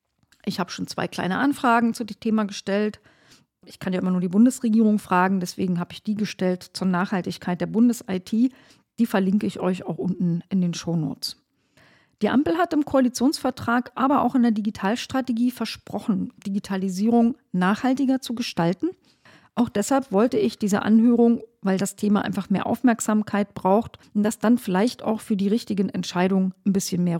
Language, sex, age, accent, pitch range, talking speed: German, female, 40-59, German, 190-235 Hz, 170 wpm